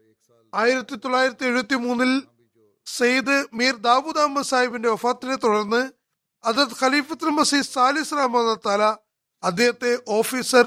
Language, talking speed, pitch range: Malayalam, 60 wpm, 200-270 Hz